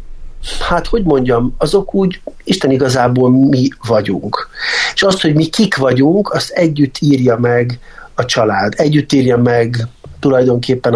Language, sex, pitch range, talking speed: Hungarian, male, 115-140 Hz, 135 wpm